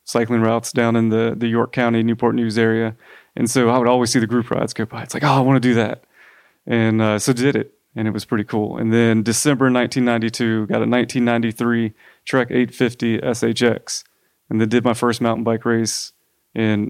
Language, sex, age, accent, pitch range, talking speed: English, male, 30-49, American, 110-125 Hz, 210 wpm